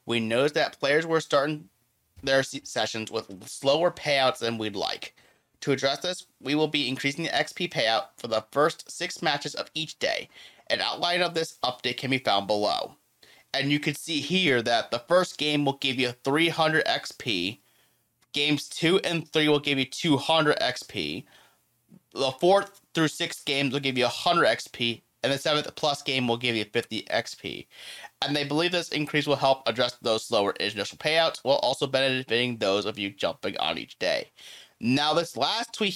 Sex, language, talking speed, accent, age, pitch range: male, English, 185 wpm, American, 30-49, 120-155 Hz